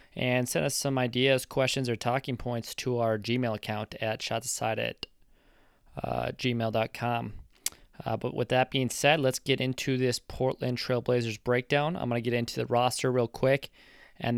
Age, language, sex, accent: 20-39, English, male, American